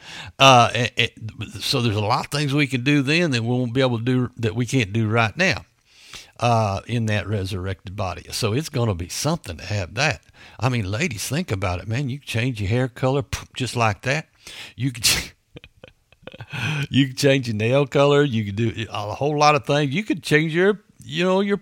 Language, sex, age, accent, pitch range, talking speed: English, male, 60-79, American, 100-135 Hz, 220 wpm